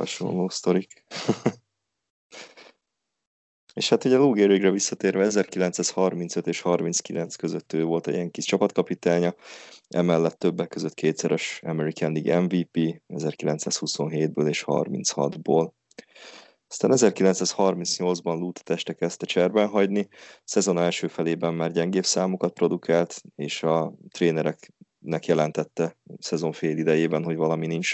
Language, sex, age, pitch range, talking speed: Hungarian, male, 20-39, 80-90 Hz, 110 wpm